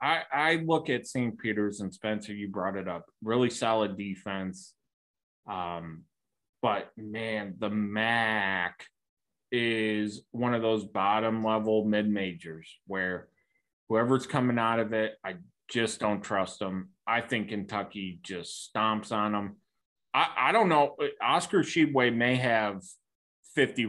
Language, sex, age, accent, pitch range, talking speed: English, male, 20-39, American, 100-120 Hz, 135 wpm